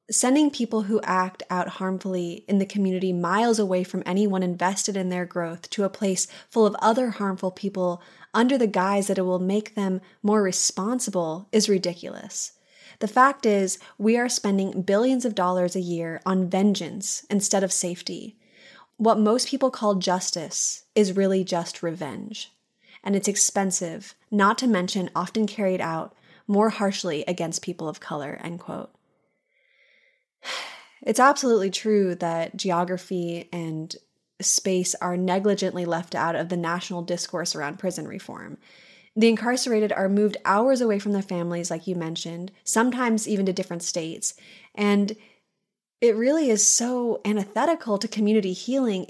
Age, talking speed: 20-39, 150 wpm